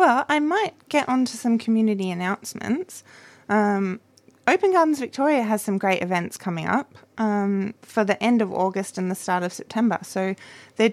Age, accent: 20-39, Australian